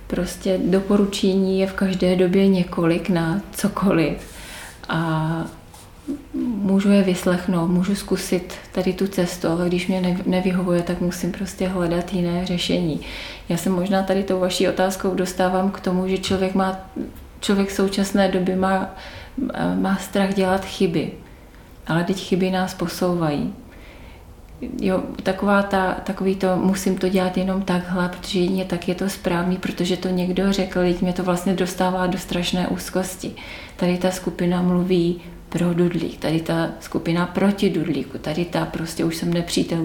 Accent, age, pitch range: native, 30-49, 175-190 Hz